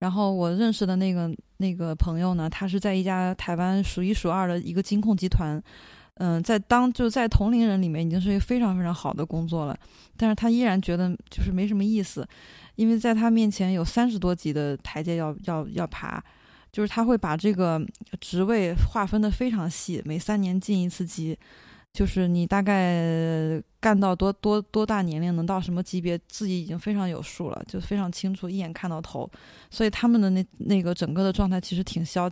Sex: female